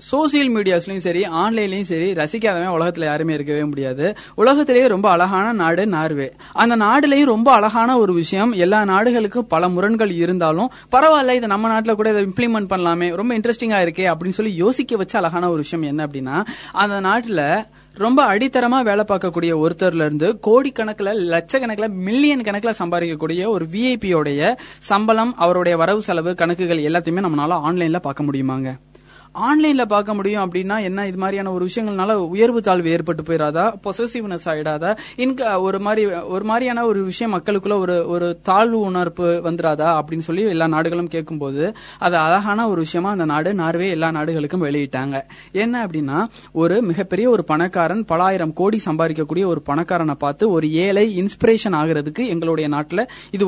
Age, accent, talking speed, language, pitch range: 20-39, native, 120 wpm, Tamil, 165-220 Hz